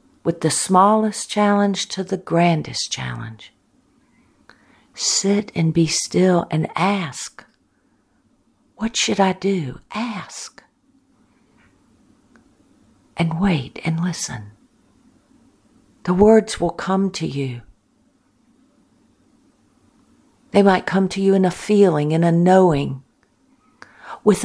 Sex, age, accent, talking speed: female, 60-79, American, 100 wpm